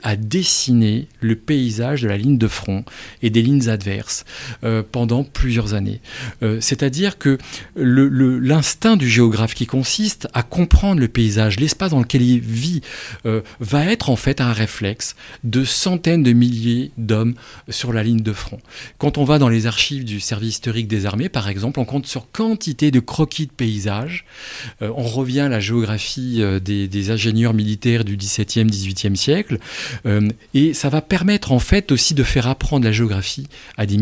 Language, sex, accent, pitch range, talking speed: French, male, French, 110-140 Hz, 170 wpm